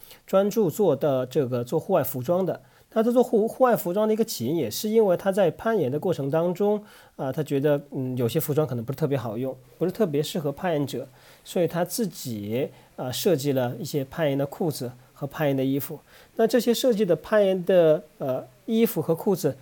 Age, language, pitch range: 40-59, Chinese, 130-185 Hz